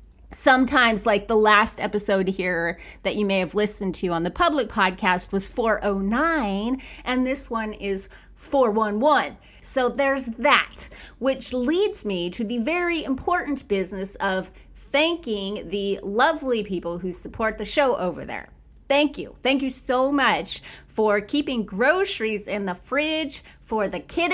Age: 30-49